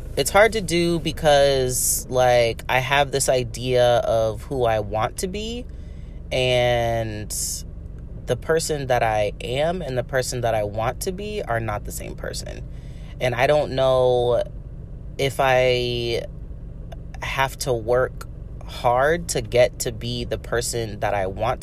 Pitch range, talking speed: 110-145 Hz, 150 wpm